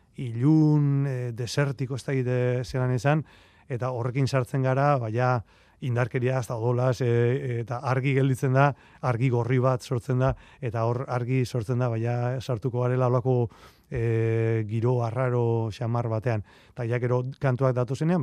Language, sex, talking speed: Spanish, male, 145 wpm